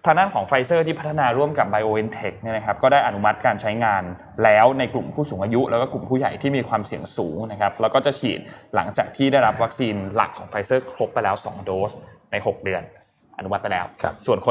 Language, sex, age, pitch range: Thai, male, 20-39, 105-135 Hz